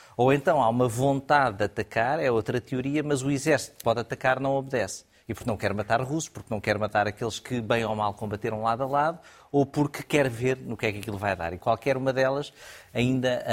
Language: Portuguese